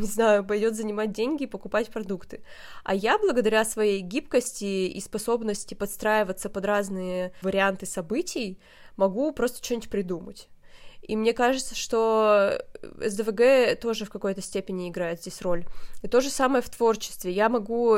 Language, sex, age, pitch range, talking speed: Russian, female, 20-39, 195-240 Hz, 145 wpm